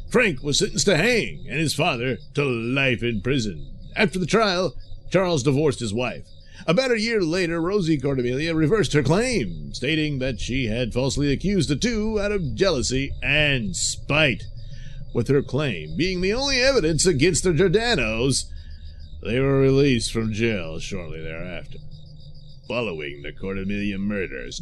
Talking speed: 150 wpm